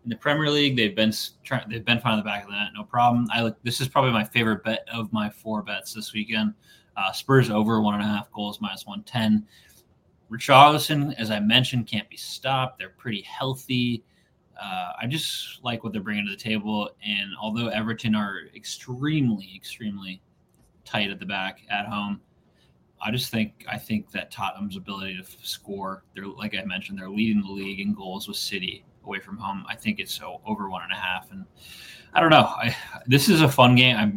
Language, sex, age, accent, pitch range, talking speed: English, male, 20-39, American, 105-120 Hz, 210 wpm